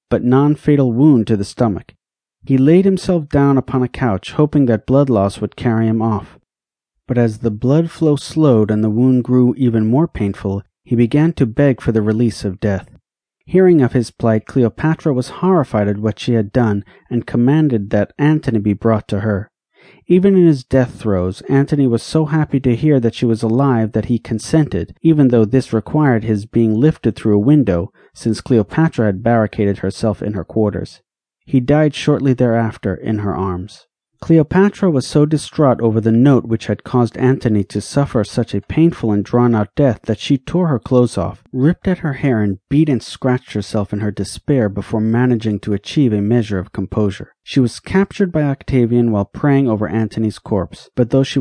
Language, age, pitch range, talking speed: English, 40-59, 105-140 Hz, 190 wpm